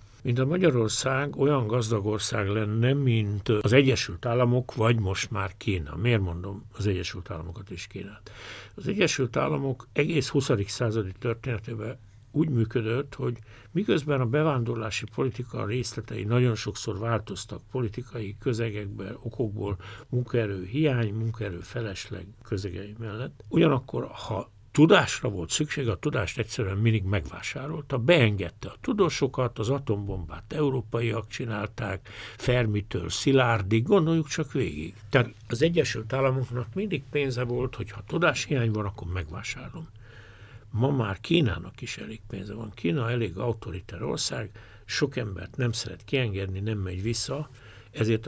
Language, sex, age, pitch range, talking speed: Hungarian, male, 60-79, 105-130 Hz, 130 wpm